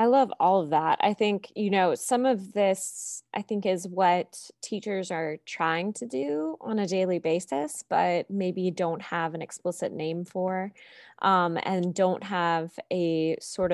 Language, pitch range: English, 165-195 Hz